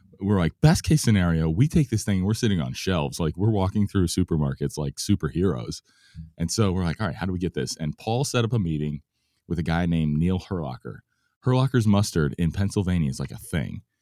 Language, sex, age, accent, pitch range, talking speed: English, male, 30-49, American, 85-110 Hz, 220 wpm